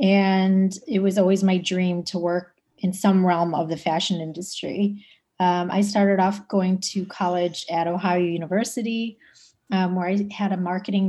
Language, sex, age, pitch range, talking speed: English, female, 30-49, 175-200 Hz, 170 wpm